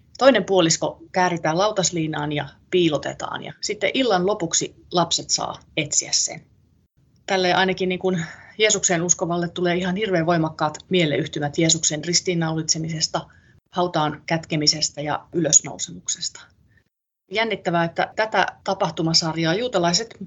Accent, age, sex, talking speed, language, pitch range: native, 30-49, female, 105 wpm, Finnish, 155-195 Hz